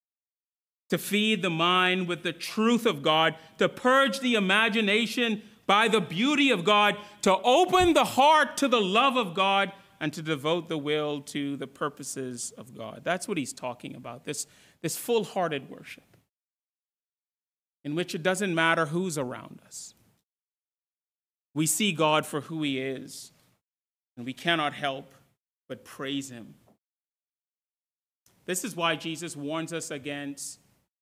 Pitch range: 145-230 Hz